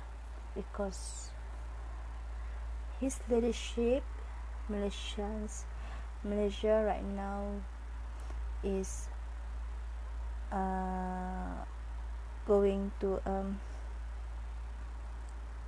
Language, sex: English, female